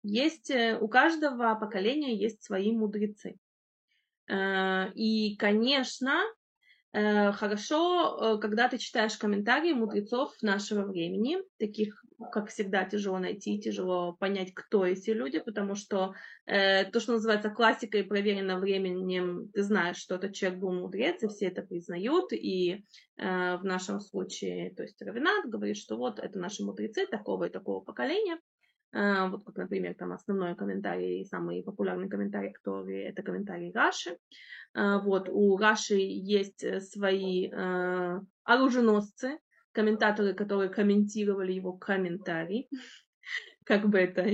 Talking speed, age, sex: 120 wpm, 20-39, female